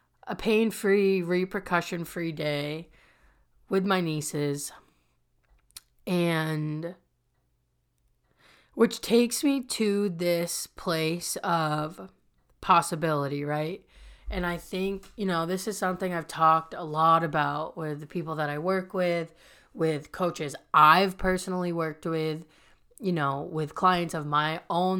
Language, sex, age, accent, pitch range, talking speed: English, female, 30-49, American, 155-185 Hz, 120 wpm